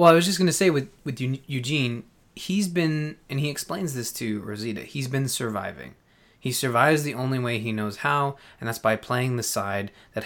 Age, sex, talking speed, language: 20-39, male, 210 wpm, English